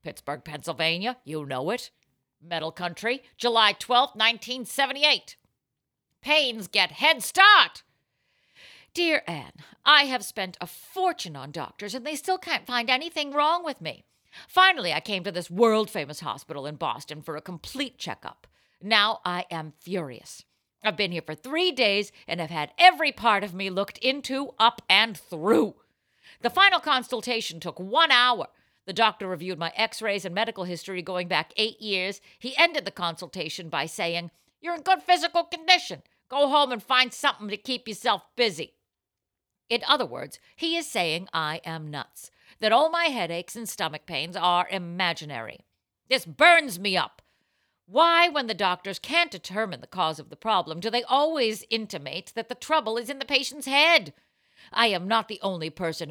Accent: American